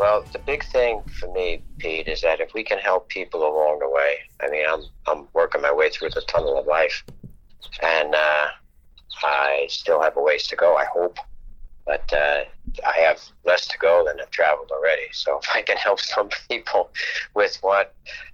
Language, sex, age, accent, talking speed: English, male, 60-79, American, 195 wpm